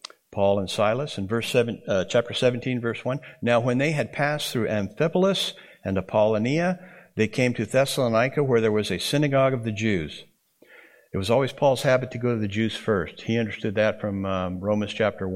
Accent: American